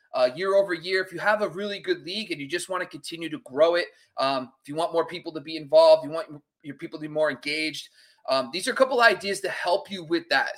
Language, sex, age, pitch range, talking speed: English, male, 30-49, 155-235 Hz, 280 wpm